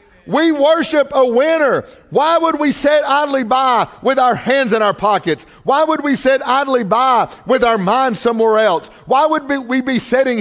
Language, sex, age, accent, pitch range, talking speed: English, male, 50-69, American, 210-285 Hz, 185 wpm